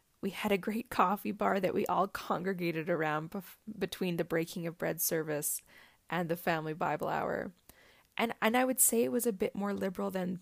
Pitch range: 165-200 Hz